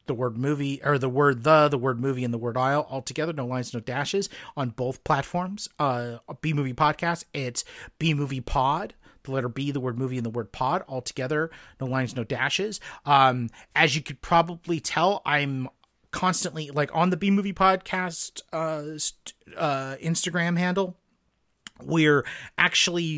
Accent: American